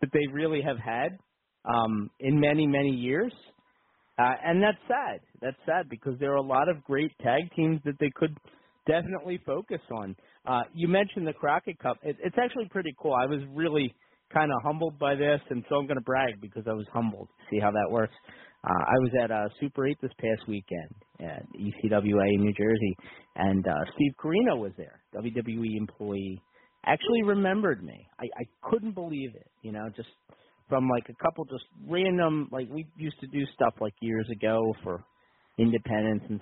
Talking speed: 190 wpm